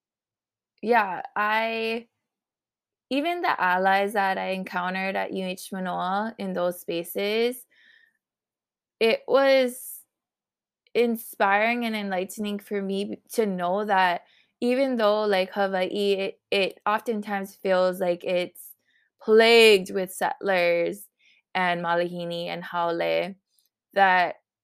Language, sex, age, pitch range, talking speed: English, female, 20-39, 180-220 Hz, 100 wpm